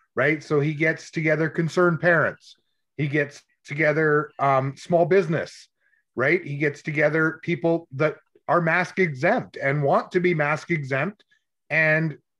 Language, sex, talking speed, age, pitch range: English, male, 140 wpm, 30-49, 145-180 Hz